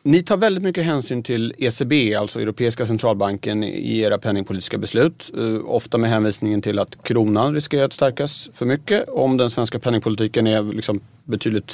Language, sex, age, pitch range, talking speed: Swedish, male, 30-49, 110-145 Hz, 165 wpm